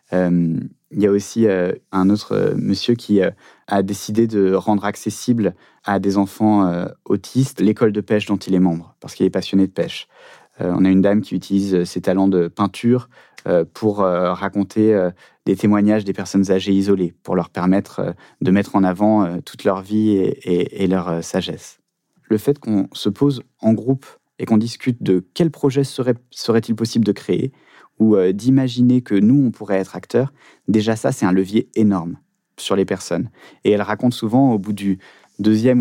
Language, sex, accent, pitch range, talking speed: French, male, French, 95-115 Hz, 200 wpm